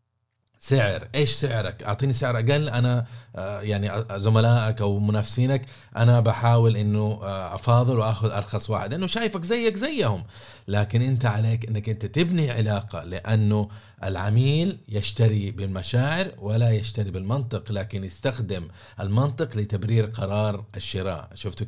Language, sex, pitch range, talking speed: Arabic, male, 100-120 Hz, 120 wpm